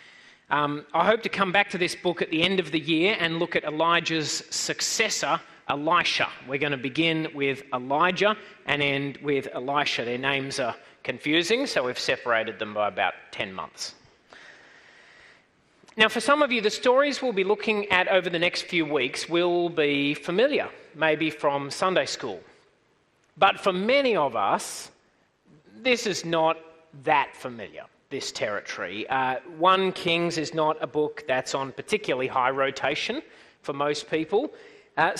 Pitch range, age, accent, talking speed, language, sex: 145-215 Hz, 30-49, Australian, 160 wpm, English, male